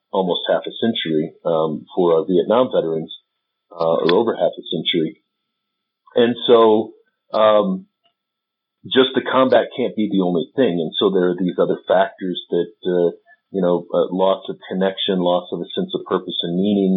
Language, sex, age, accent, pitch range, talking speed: English, male, 50-69, American, 90-115 Hz, 175 wpm